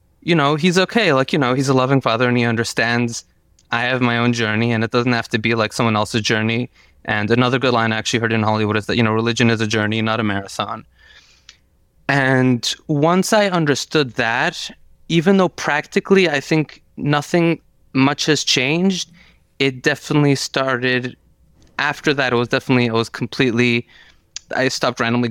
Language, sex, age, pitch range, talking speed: English, male, 20-39, 115-140 Hz, 185 wpm